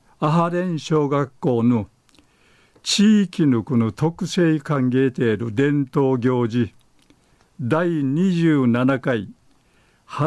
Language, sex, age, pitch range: Japanese, male, 50-69, 130-165 Hz